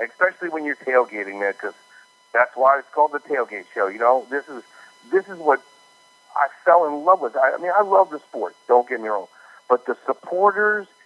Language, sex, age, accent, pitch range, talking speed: English, male, 50-69, American, 125-170 Hz, 205 wpm